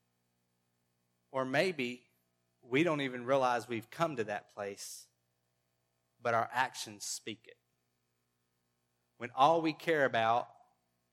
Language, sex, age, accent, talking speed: English, male, 30-49, American, 115 wpm